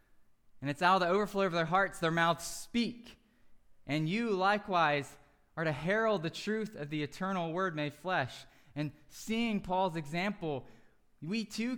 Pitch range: 145-190 Hz